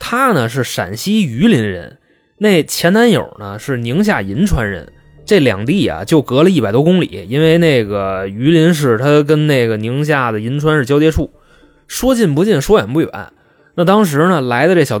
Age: 20-39